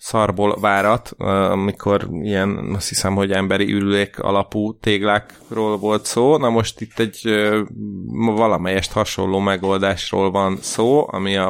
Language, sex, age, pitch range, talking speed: Hungarian, male, 30-49, 95-105 Hz, 125 wpm